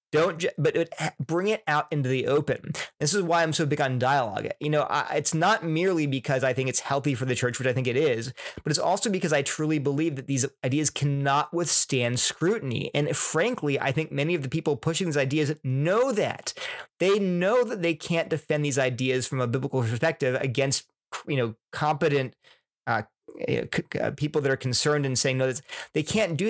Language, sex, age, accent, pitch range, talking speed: English, male, 30-49, American, 135-165 Hz, 200 wpm